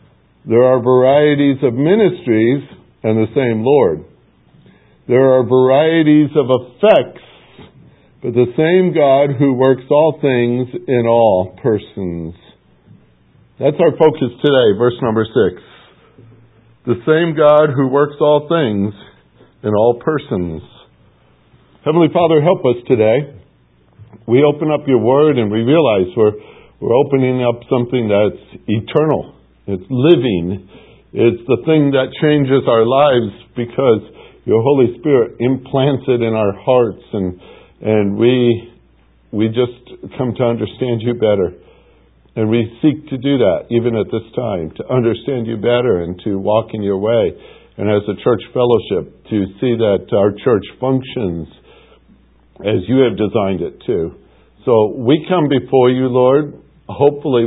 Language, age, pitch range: English, 60-79, 110-140 Hz